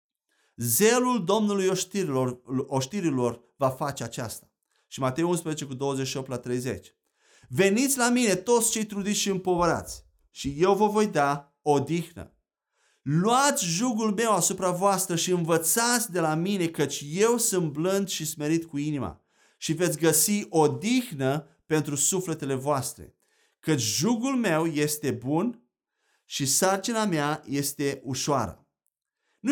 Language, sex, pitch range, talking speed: Romanian, male, 140-200 Hz, 130 wpm